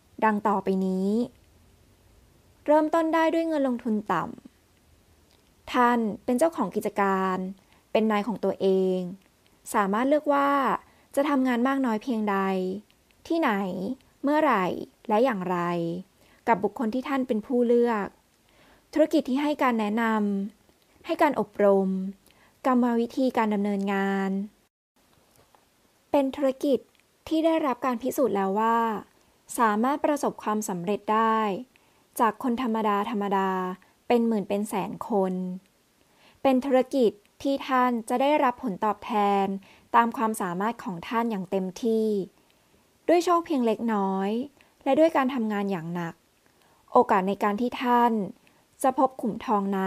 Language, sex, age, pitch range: Thai, female, 20-39, 200-260 Hz